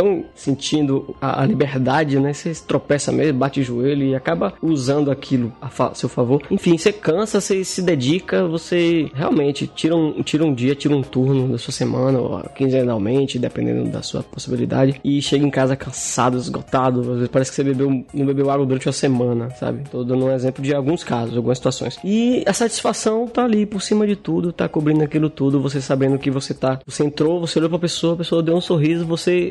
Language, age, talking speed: Portuguese, 20-39, 200 wpm